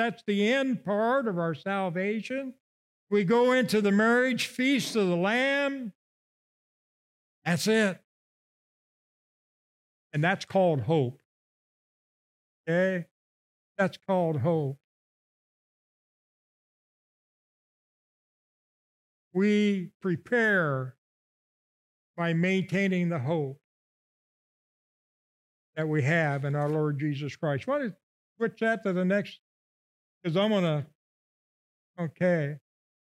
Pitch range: 165-225 Hz